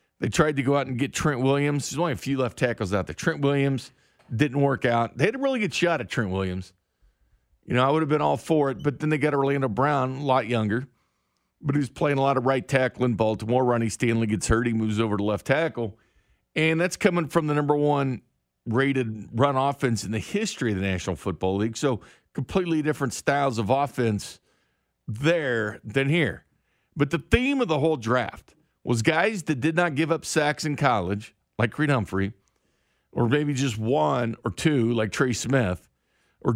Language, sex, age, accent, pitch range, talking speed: English, male, 50-69, American, 115-150 Hz, 210 wpm